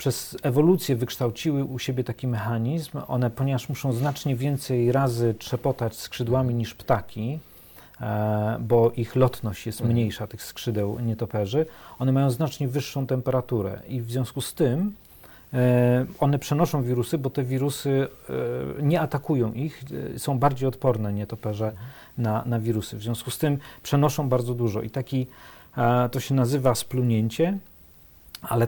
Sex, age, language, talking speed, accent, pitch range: male, 40-59, Polish, 135 wpm, native, 115-135 Hz